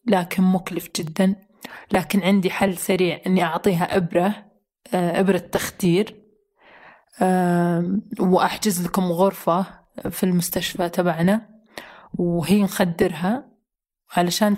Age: 20-39